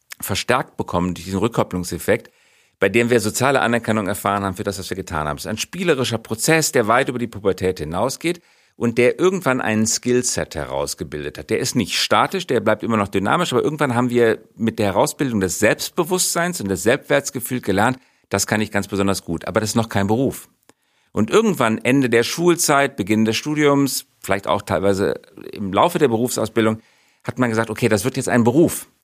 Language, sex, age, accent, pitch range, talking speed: German, male, 50-69, German, 95-130 Hz, 190 wpm